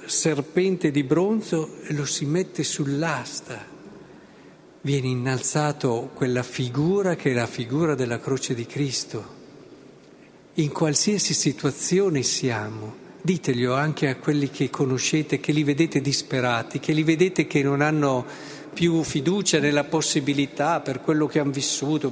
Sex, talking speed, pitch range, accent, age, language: male, 135 wpm, 125-150 Hz, native, 50-69, Italian